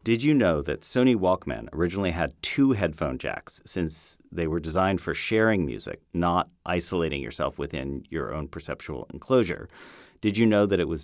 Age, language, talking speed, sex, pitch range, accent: 40-59, English, 175 wpm, male, 80-95 Hz, American